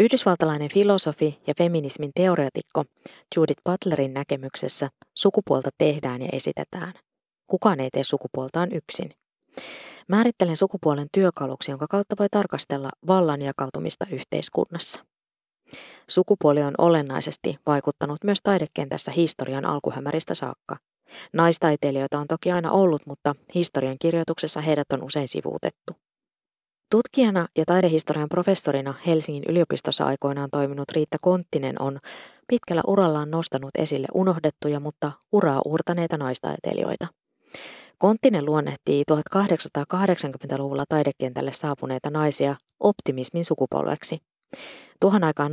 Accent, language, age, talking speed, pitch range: native, Finnish, 20-39, 105 wpm, 140-175 Hz